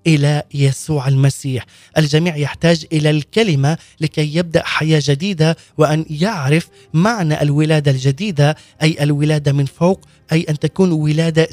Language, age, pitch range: Arabic, 30-49, 145-180 Hz